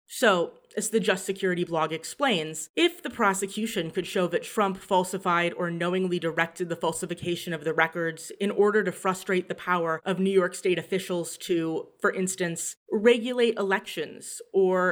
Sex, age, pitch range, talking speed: female, 30-49, 170-210 Hz, 160 wpm